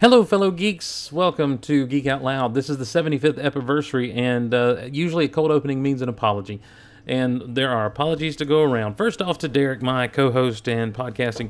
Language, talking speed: English, 195 wpm